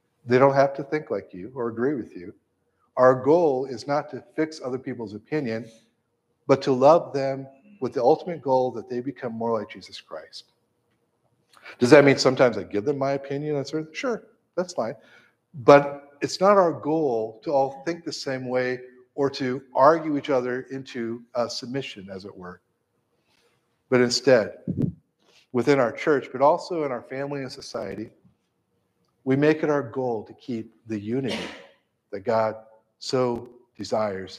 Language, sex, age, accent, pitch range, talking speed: English, male, 50-69, American, 115-140 Hz, 170 wpm